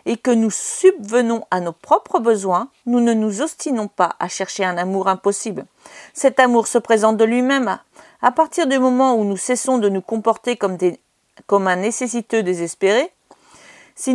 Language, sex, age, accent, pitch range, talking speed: French, female, 50-69, French, 205-270 Hz, 175 wpm